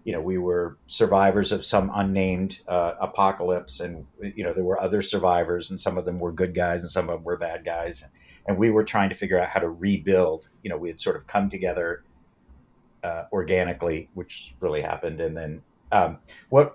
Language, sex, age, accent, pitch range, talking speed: English, male, 50-69, American, 90-110 Hz, 210 wpm